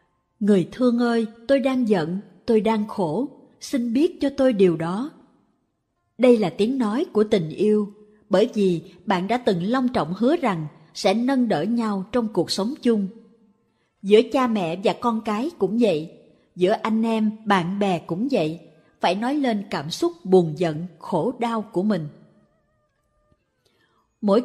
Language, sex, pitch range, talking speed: Vietnamese, female, 180-245 Hz, 160 wpm